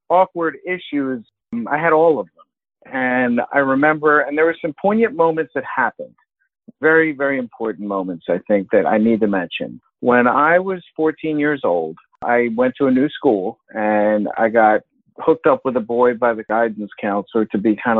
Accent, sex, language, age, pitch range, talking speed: American, male, English, 50-69, 115-160 Hz, 185 wpm